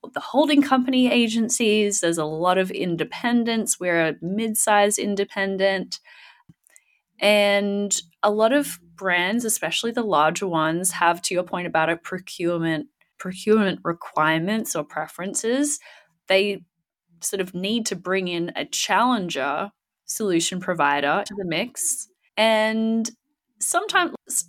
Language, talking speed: English, 120 wpm